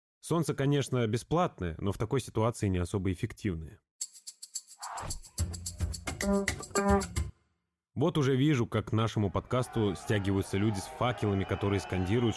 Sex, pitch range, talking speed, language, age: male, 95-125 Hz, 110 wpm, Russian, 20-39